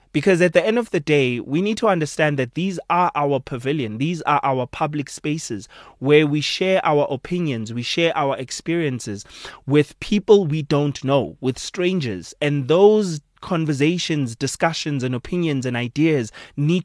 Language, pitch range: English, 135-165 Hz